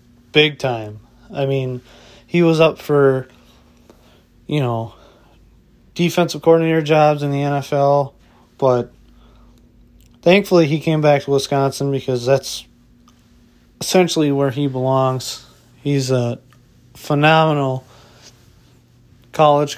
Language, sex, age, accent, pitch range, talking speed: English, male, 20-39, American, 125-145 Hz, 100 wpm